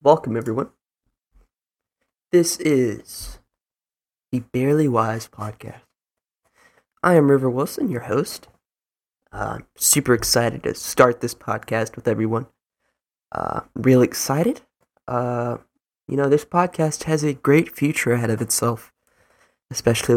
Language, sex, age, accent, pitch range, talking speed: English, male, 20-39, American, 120-145 Hz, 115 wpm